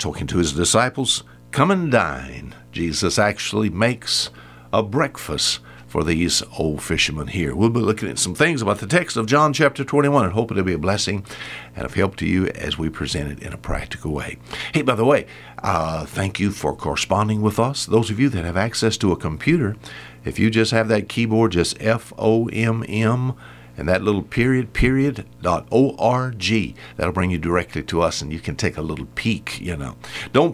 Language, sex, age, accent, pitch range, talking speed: English, male, 60-79, American, 85-135 Hz, 195 wpm